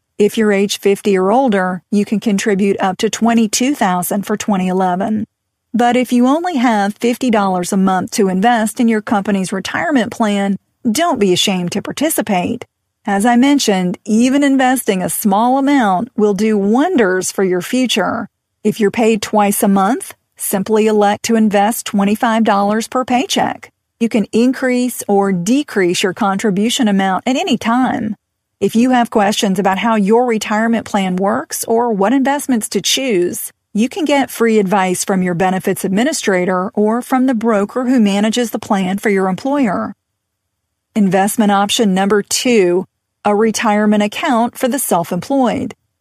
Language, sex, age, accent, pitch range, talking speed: English, female, 40-59, American, 200-240 Hz, 155 wpm